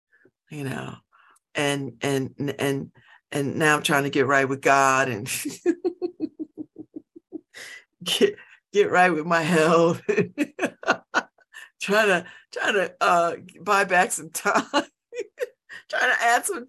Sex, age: female, 50-69